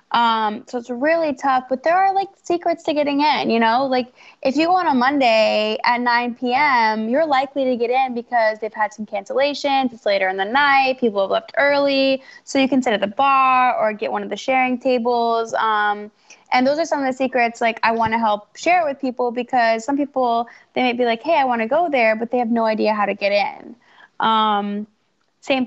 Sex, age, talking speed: female, 10-29, 230 wpm